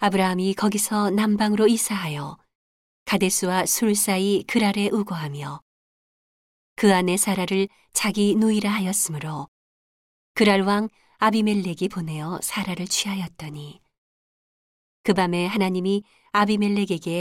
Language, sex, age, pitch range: Korean, female, 40-59, 170-210 Hz